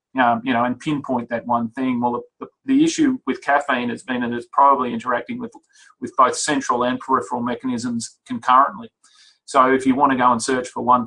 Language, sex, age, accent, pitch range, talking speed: English, male, 40-59, Australian, 120-135 Hz, 210 wpm